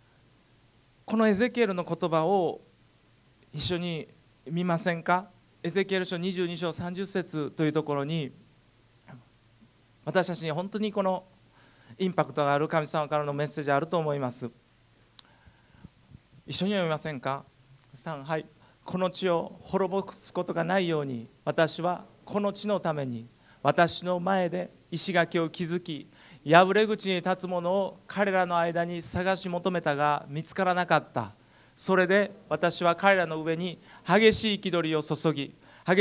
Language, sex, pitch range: Japanese, male, 135-185 Hz